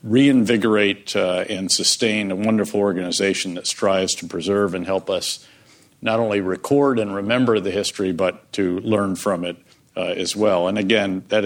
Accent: American